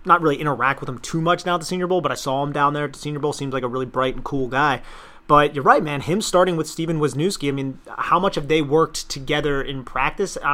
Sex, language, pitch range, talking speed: male, English, 130-150 Hz, 285 wpm